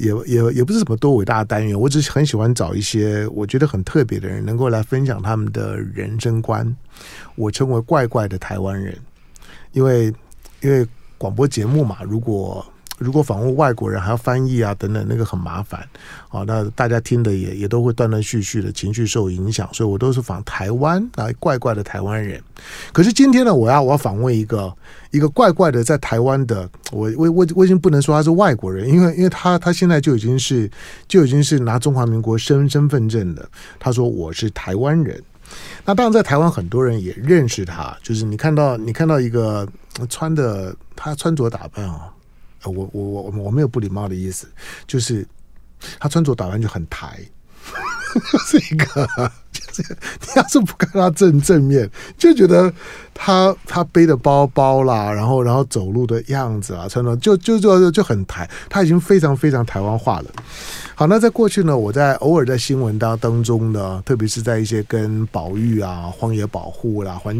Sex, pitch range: male, 105-145 Hz